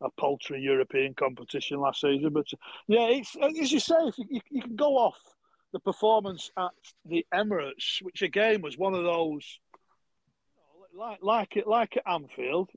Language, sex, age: English, male, 40-59